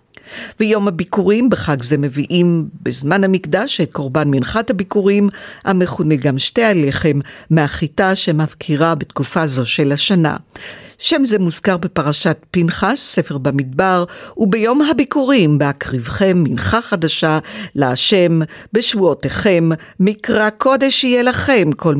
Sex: female